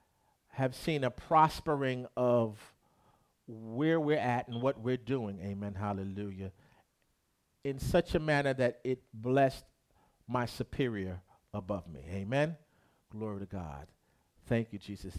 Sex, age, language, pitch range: male, 50-69, English, 105-155 Hz